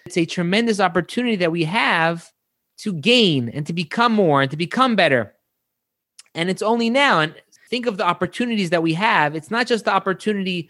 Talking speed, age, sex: 190 wpm, 30-49, male